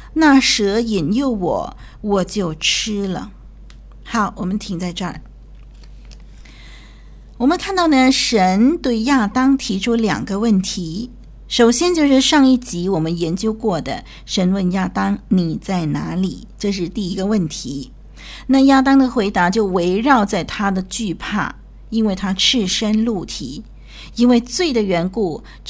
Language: Chinese